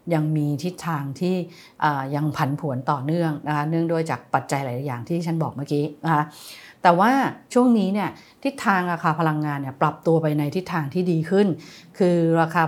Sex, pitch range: female, 145-180 Hz